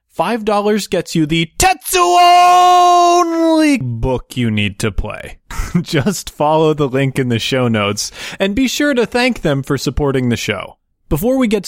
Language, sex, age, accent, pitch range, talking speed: English, male, 20-39, American, 120-190 Hz, 165 wpm